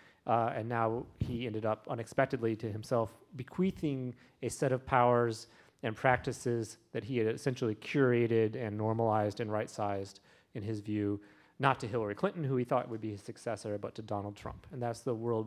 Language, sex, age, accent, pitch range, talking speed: English, male, 30-49, American, 110-135 Hz, 180 wpm